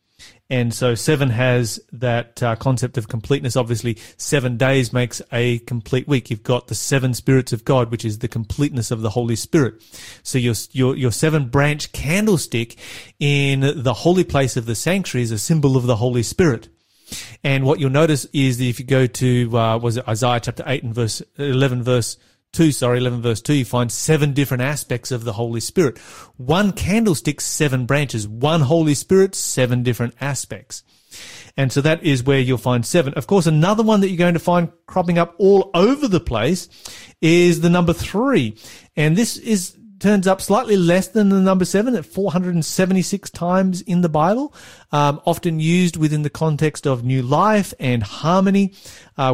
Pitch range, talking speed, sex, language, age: 125-175 Hz, 185 wpm, male, English, 30-49